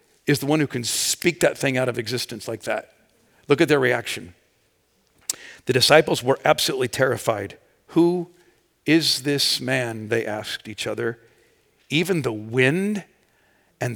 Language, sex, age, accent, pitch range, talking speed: English, male, 50-69, American, 145-185 Hz, 145 wpm